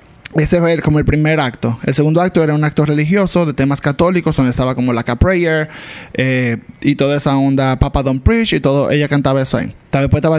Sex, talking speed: male, 220 wpm